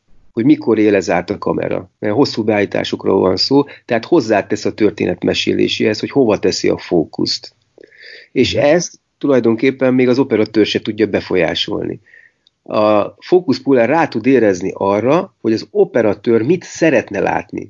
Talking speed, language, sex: 140 wpm, Hungarian, male